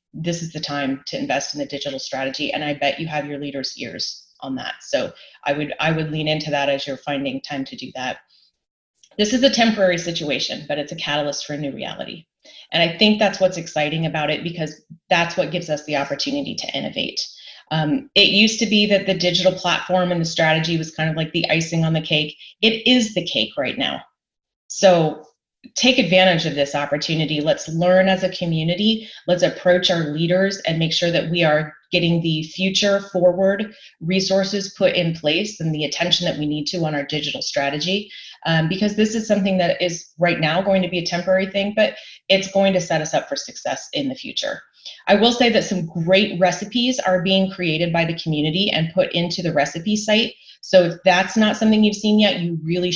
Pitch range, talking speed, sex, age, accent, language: 155-195 Hz, 215 wpm, female, 30-49, American, English